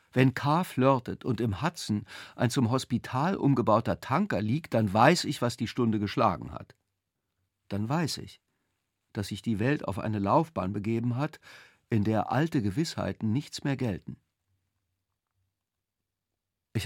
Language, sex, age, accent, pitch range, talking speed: German, male, 50-69, German, 100-135 Hz, 140 wpm